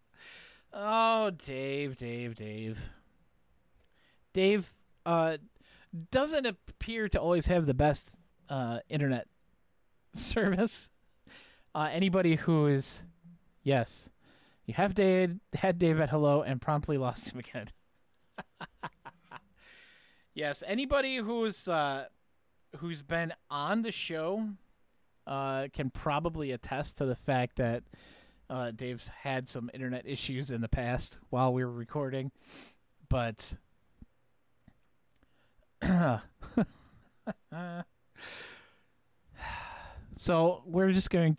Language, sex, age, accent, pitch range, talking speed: English, male, 30-49, American, 120-175 Hz, 95 wpm